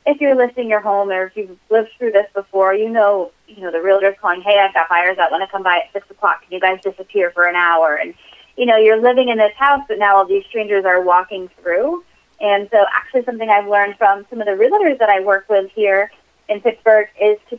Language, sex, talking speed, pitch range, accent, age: English, female, 255 wpm, 180-220 Hz, American, 30-49